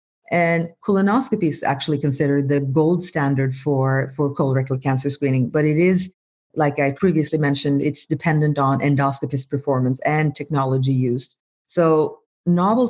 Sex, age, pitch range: female, 40-59, 135-155 Hz